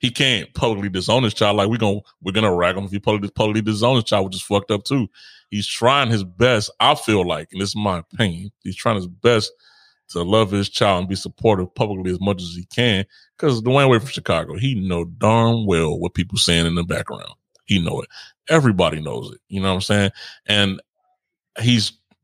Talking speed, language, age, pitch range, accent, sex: 225 wpm, English, 30-49, 95-110 Hz, American, male